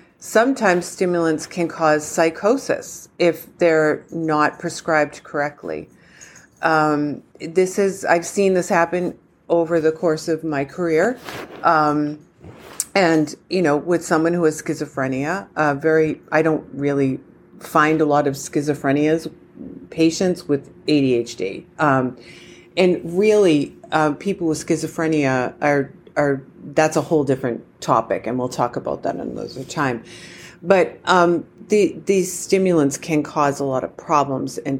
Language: English